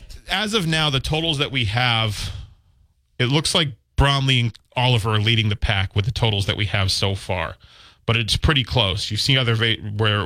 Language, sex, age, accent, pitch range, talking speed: English, male, 30-49, American, 100-120 Hz, 205 wpm